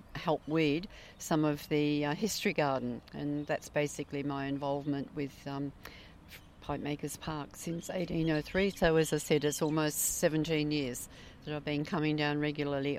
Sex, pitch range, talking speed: female, 140-160 Hz, 155 wpm